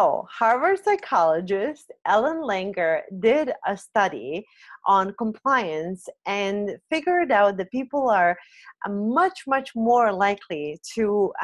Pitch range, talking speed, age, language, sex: 195-255 Hz, 110 wpm, 30-49, English, female